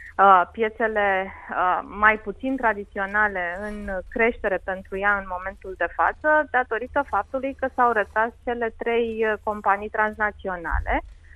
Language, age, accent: Romanian, 30-49, native